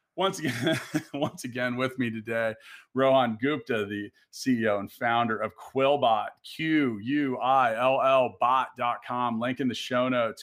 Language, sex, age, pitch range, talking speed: English, male, 40-59, 120-145 Hz, 120 wpm